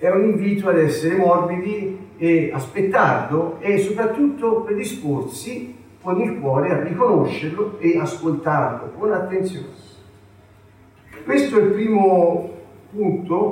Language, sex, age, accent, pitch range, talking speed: Italian, male, 50-69, native, 140-195 Hz, 110 wpm